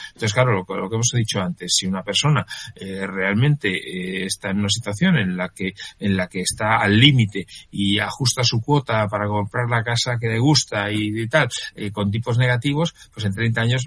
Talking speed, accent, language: 205 wpm, Spanish, Spanish